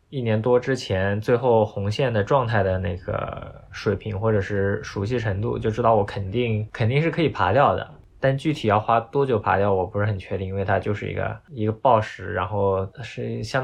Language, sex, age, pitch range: Chinese, male, 20-39, 100-125 Hz